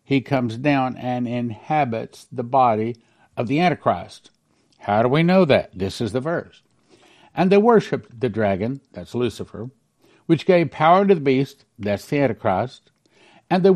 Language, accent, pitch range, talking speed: English, American, 110-145 Hz, 160 wpm